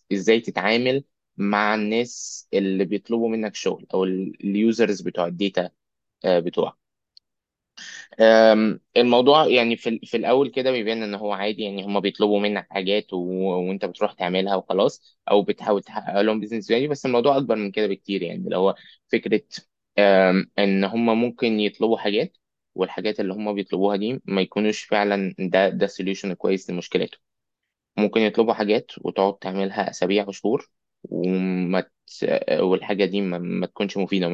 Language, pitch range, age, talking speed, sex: Arabic, 95-110 Hz, 20-39, 145 wpm, male